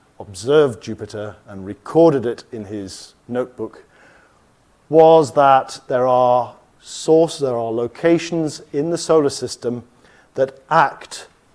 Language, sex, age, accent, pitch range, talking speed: English, male, 40-59, British, 105-140 Hz, 115 wpm